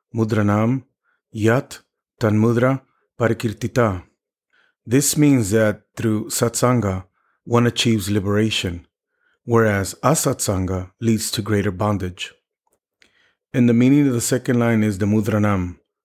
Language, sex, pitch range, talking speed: English, male, 105-135 Hz, 105 wpm